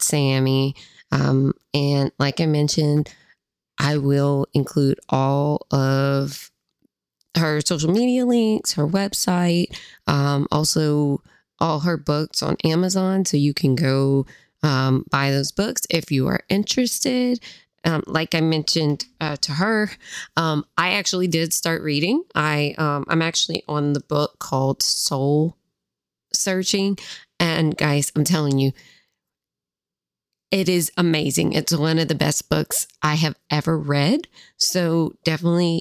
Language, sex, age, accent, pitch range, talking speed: English, female, 20-39, American, 145-180 Hz, 130 wpm